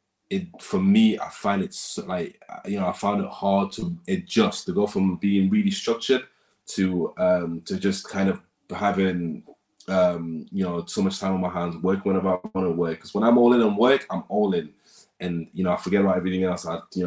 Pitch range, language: 95-135 Hz, English